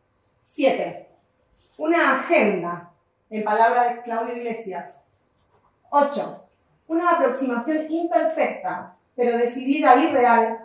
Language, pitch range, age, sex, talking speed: Spanish, 230-280 Hz, 30-49, female, 90 wpm